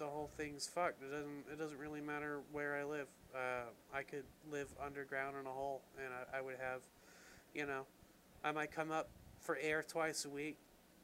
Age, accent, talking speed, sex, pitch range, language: 30-49, American, 200 wpm, male, 135-150 Hz, English